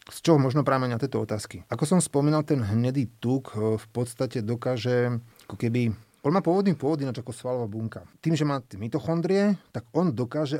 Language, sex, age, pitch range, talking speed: Slovak, male, 30-49, 115-150 Hz, 180 wpm